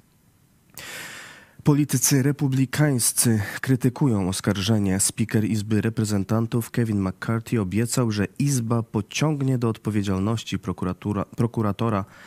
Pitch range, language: 95-120 Hz, Polish